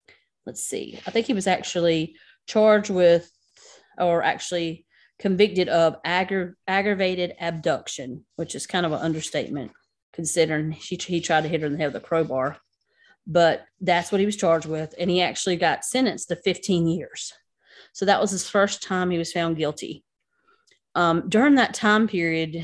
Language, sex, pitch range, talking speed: English, female, 160-185 Hz, 170 wpm